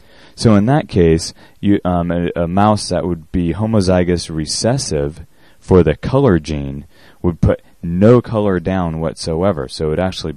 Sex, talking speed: male, 155 wpm